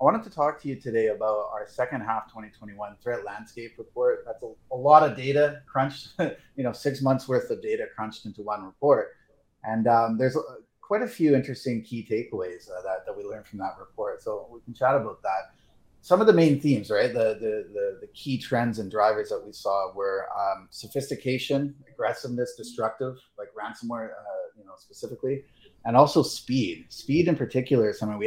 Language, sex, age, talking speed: English, male, 30-49, 195 wpm